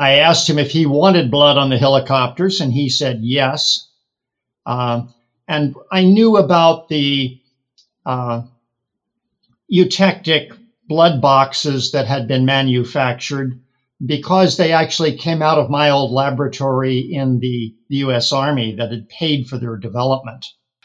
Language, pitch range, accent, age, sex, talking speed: English, 125-155 Hz, American, 50-69, male, 140 wpm